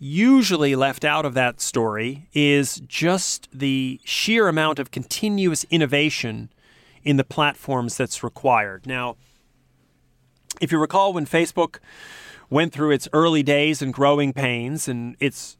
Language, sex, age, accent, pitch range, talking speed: English, male, 40-59, American, 130-165 Hz, 135 wpm